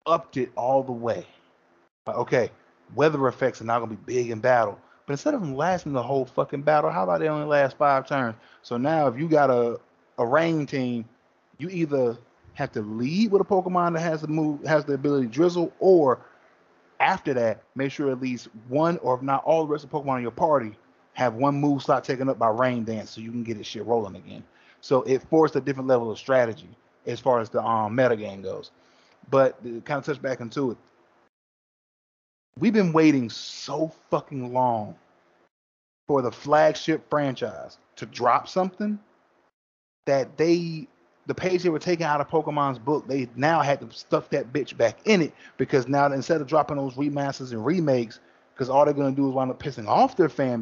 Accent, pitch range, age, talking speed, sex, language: American, 120-155 Hz, 30-49, 205 wpm, male, English